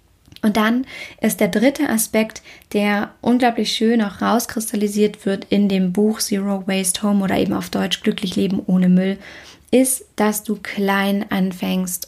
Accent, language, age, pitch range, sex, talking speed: German, German, 20-39, 195-225 Hz, female, 155 wpm